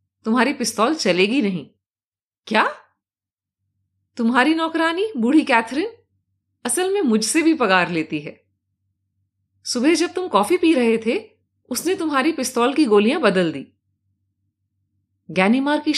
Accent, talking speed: native, 120 wpm